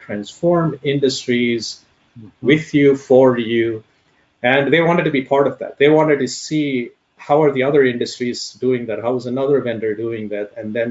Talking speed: 180 wpm